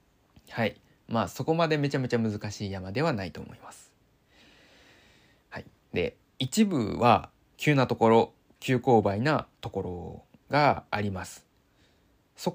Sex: male